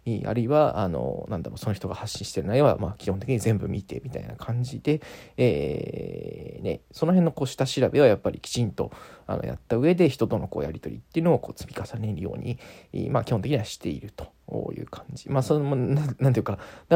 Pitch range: 110-140 Hz